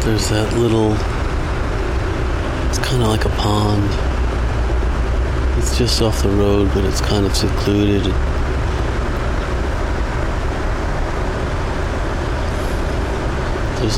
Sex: male